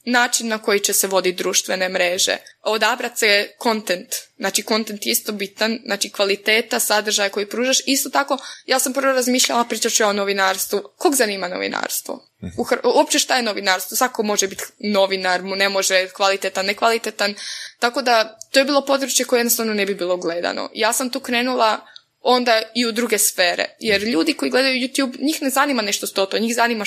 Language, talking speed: Croatian, 190 wpm